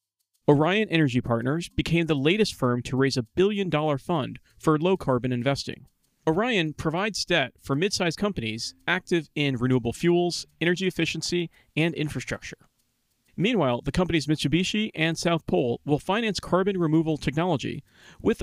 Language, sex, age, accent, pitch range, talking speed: English, male, 40-59, American, 135-180 Hz, 145 wpm